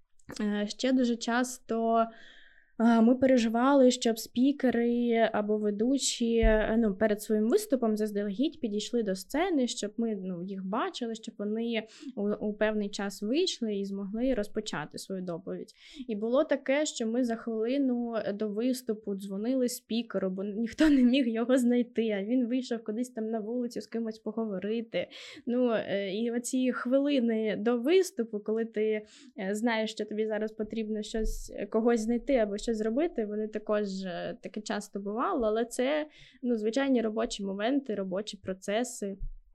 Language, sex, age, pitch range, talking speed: Ukrainian, female, 20-39, 210-245 Hz, 140 wpm